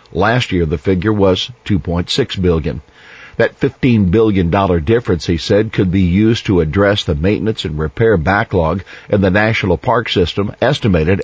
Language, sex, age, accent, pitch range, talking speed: English, male, 50-69, American, 90-120 Hz, 155 wpm